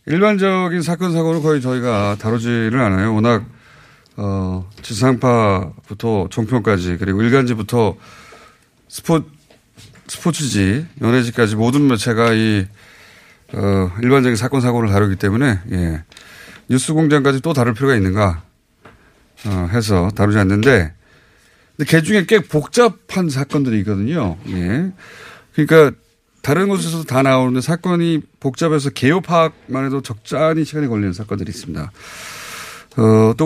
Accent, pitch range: native, 105-155 Hz